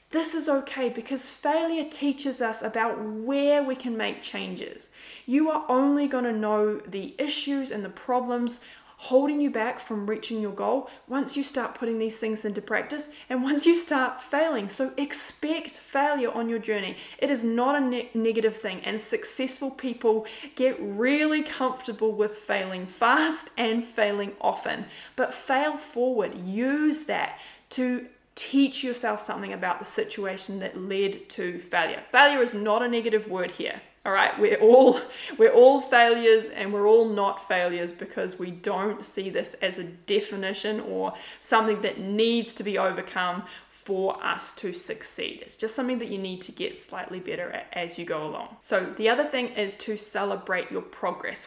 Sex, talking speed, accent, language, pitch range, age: female, 170 wpm, Australian, English, 210-265 Hz, 20-39